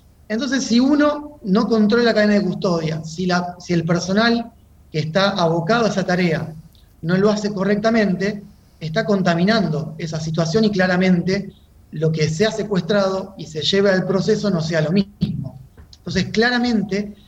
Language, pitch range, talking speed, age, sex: Spanish, 165-215 Hz, 160 wpm, 30-49, male